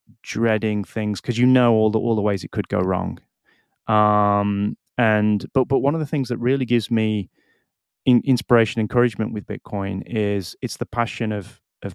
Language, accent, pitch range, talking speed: English, British, 100-115 Hz, 185 wpm